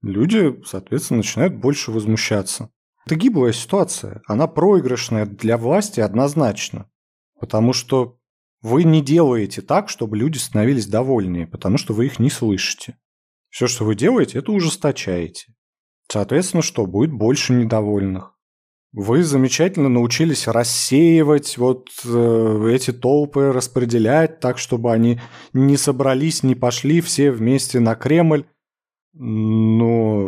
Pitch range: 110-145 Hz